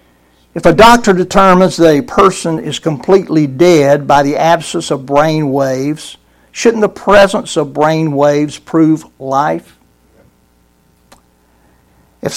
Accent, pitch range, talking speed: American, 130-180 Hz, 120 wpm